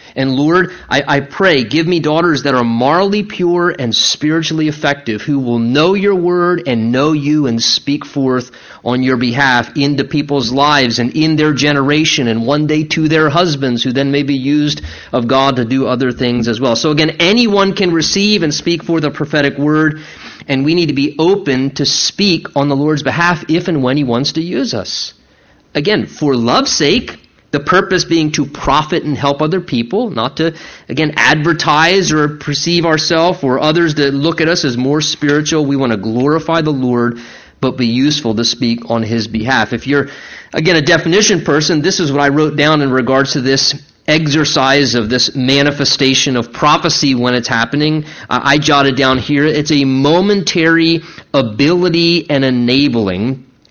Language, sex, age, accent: English, male, 30-49, American